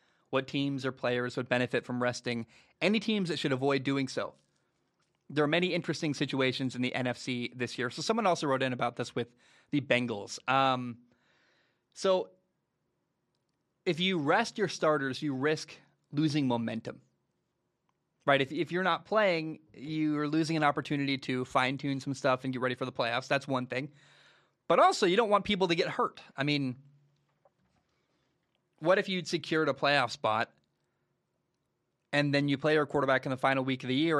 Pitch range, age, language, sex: 130-160 Hz, 20-39, English, male